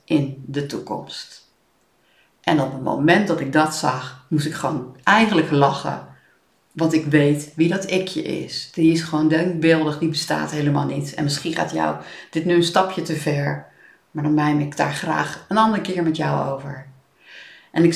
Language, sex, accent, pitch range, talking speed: Dutch, female, Dutch, 145-195 Hz, 185 wpm